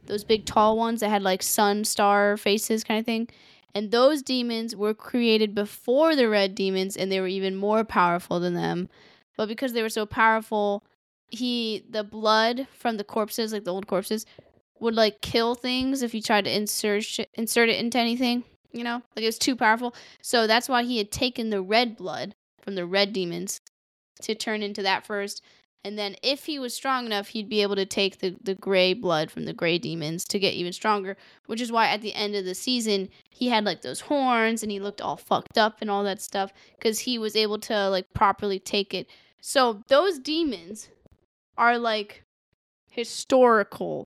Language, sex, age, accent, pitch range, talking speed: English, female, 10-29, American, 200-235 Hz, 200 wpm